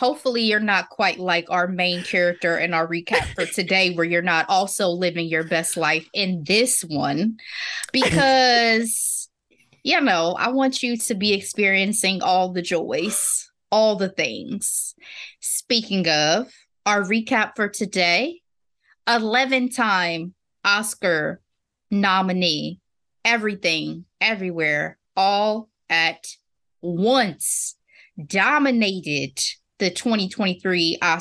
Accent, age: American, 20-39